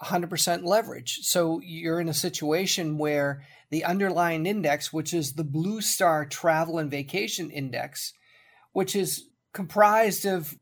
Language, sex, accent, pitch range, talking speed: English, male, American, 160-205 Hz, 135 wpm